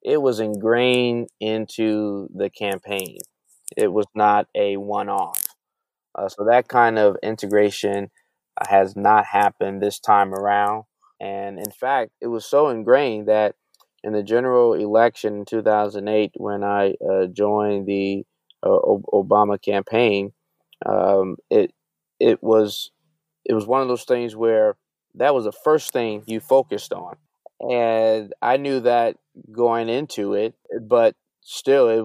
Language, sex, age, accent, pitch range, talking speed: English, male, 20-39, American, 105-120 Hz, 145 wpm